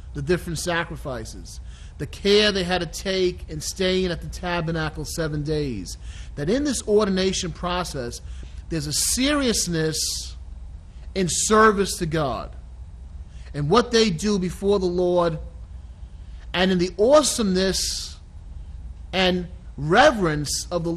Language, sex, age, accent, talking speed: English, male, 40-59, American, 125 wpm